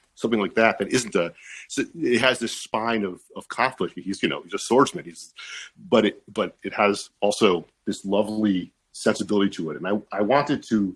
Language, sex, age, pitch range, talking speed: English, male, 40-59, 95-115 Hz, 195 wpm